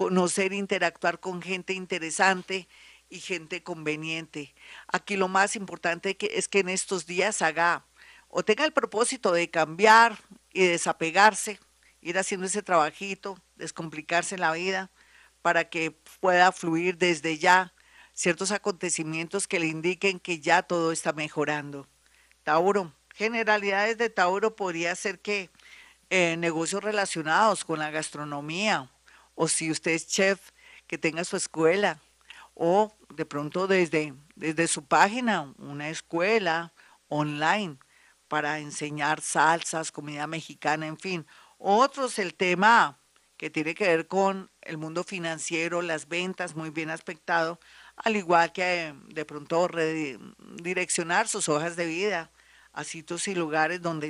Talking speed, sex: 135 wpm, female